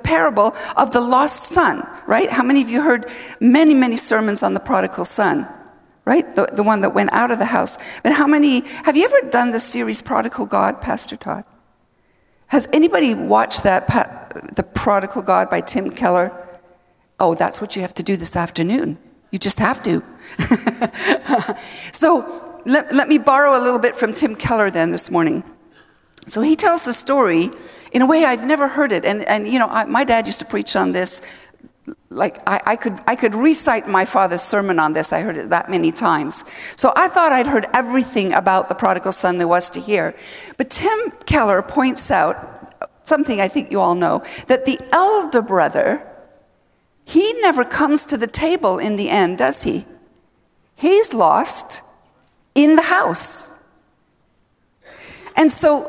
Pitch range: 210-300 Hz